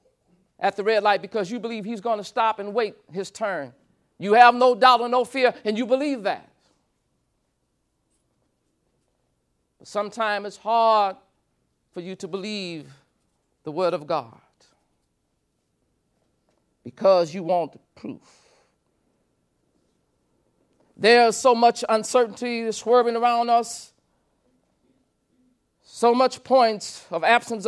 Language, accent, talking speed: English, American, 115 wpm